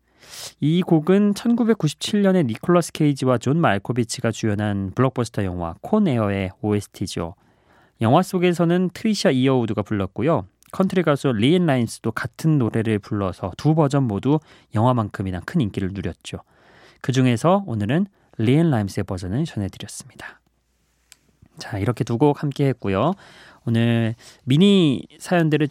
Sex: male